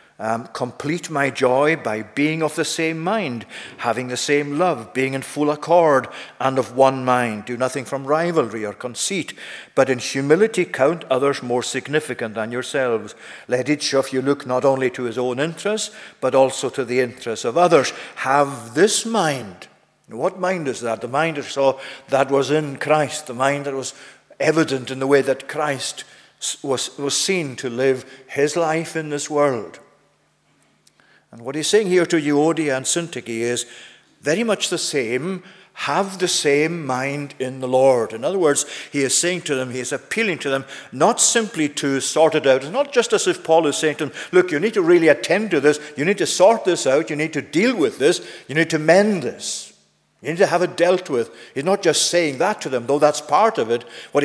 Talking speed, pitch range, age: 205 wpm, 130-175 Hz, 50-69